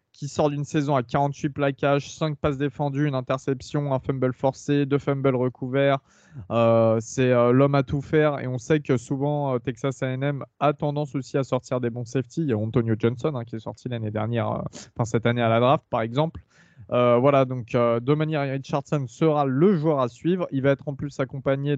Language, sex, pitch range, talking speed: French, male, 120-150 Hz, 215 wpm